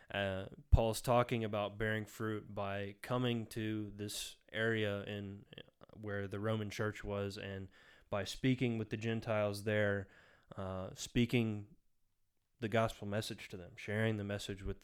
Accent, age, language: American, 20-39, English